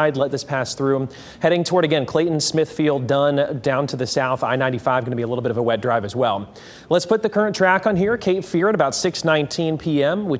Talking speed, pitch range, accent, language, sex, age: 240 wpm, 125-165 Hz, American, English, male, 30-49